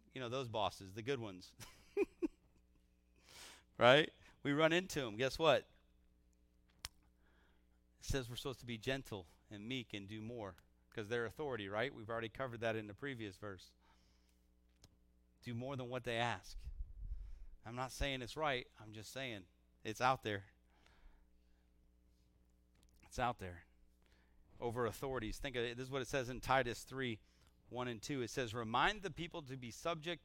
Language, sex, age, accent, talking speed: English, male, 40-59, American, 160 wpm